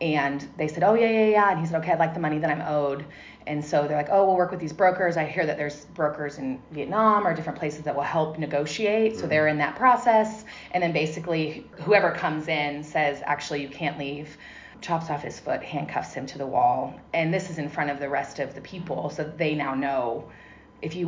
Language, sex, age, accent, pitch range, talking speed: English, female, 30-49, American, 150-180 Hz, 240 wpm